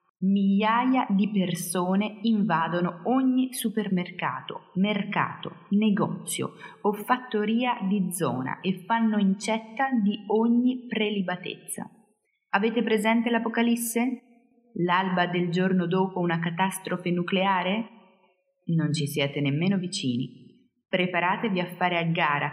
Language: Italian